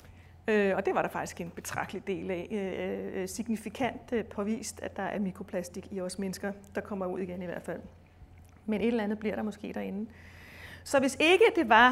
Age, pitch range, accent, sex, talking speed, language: 30-49, 185-230 Hz, native, female, 170 wpm, Danish